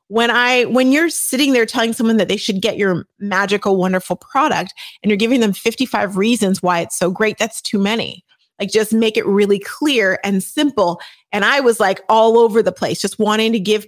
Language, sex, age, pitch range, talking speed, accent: English, female, 30-49, 185-235 Hz, 210 wpm, American